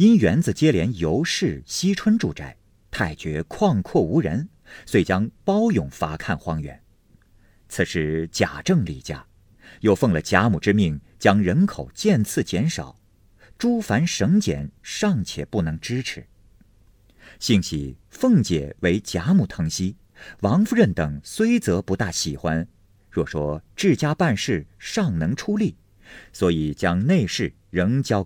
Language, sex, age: Chinese, male, 50-69